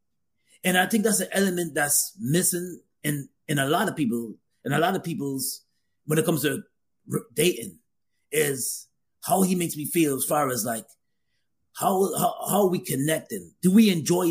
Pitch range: 135-180 Hz